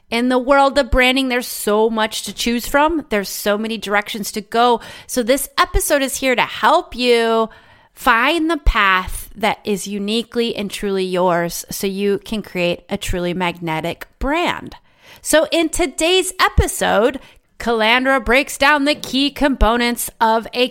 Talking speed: 155 wpm